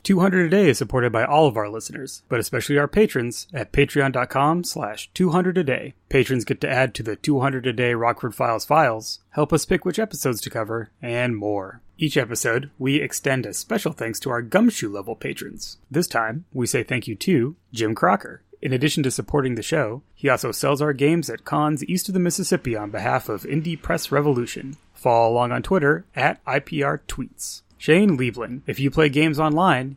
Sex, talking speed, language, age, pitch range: male, 195 wpm, English, 30-49, 120-165 Hz